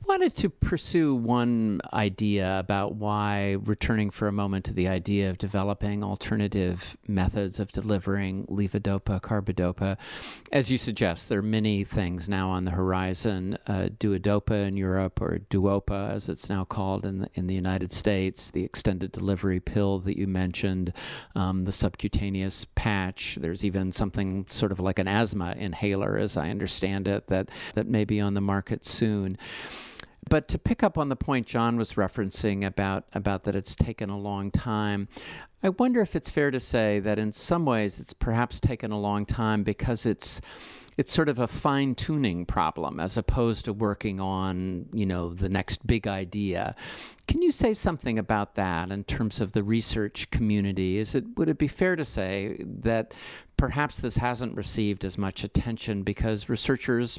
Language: English